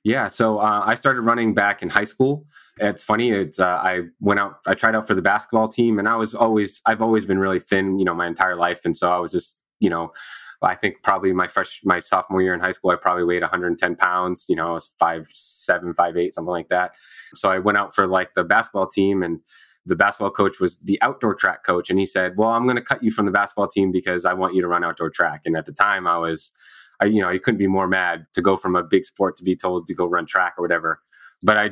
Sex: male